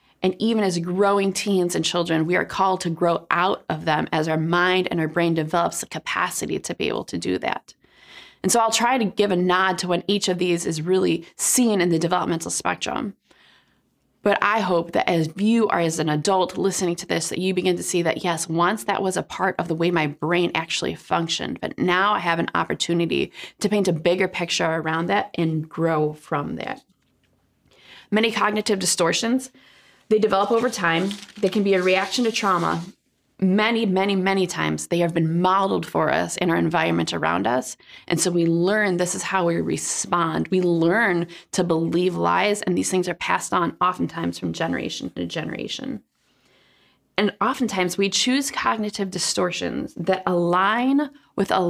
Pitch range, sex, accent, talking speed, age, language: 170-205 Hz, female, American, 190 wpm, 20-39, English